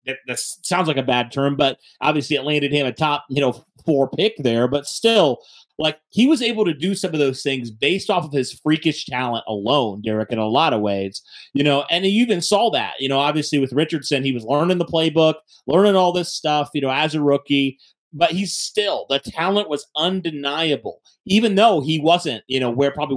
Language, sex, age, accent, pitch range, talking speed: English, male, 30-49, American, 130-175 Hz, 220 wpm